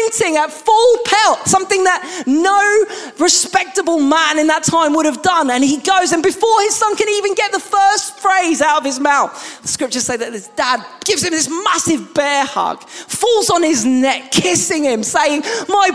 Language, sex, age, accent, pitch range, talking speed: English, male, 20-39, British, 200-330 Hz, 190 wpm